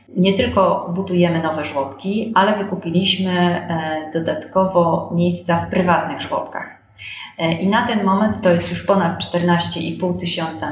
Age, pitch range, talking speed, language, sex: 30-49, 165-195 Hz, 125 wpm, Polish, female